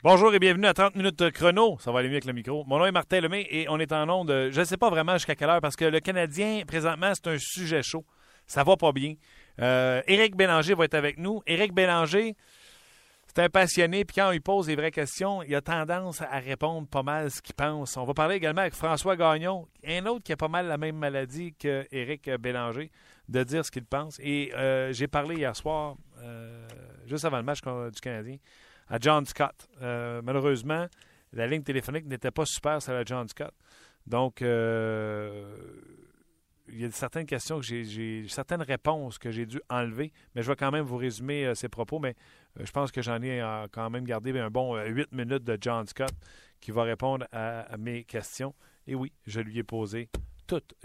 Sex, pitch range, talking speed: male, 120-160 Hz, 220 wpm